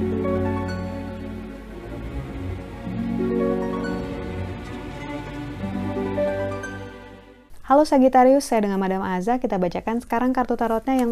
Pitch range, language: 175-235 Hz, Indonesian